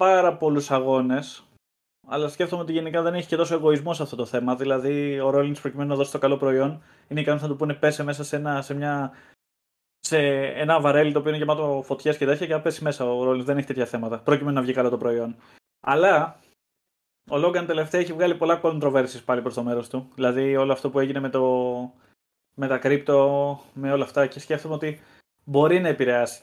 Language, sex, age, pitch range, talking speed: Greek, male, 20-39, 130-155 Hz, 200 wpm